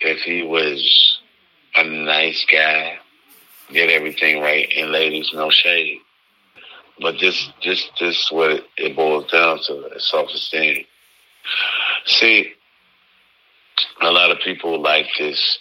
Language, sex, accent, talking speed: English, male, American, 125 wpm